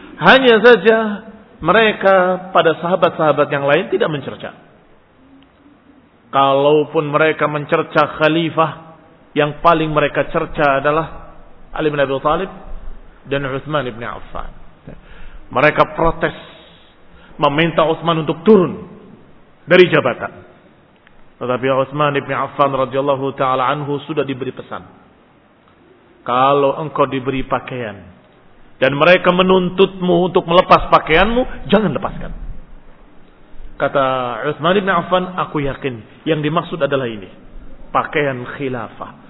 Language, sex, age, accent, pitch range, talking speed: Indonesian, male, 40-59, native, 140-210 Hz, 100 wpm